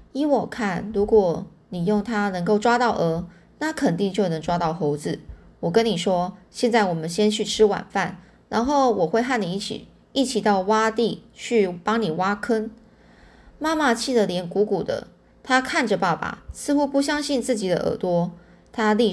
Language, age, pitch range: Chinese, 20-39, 180-235 Hz